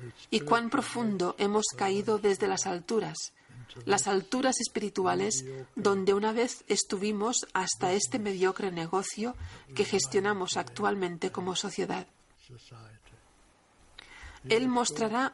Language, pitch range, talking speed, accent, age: Spanish, 160-215 Hz, 100 wpm, Spanish, 40-59